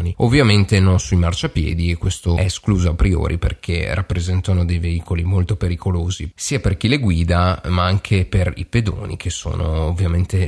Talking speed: 165 wpm